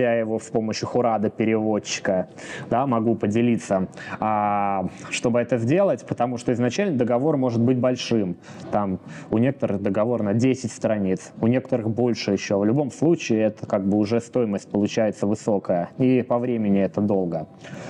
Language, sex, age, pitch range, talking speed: Russian, male, 20-39, 110-130 Hz, 150 wpm